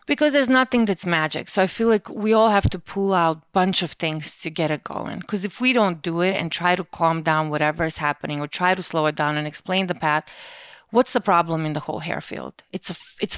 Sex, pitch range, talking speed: female, 170-215 Hz, 260 wpm